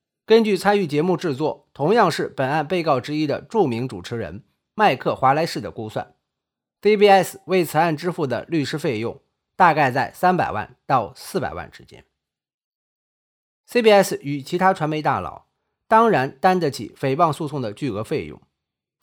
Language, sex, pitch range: Chinese, male, 135-195 Hz